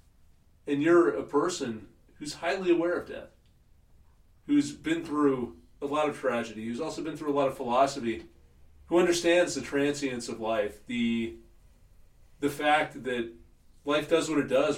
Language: English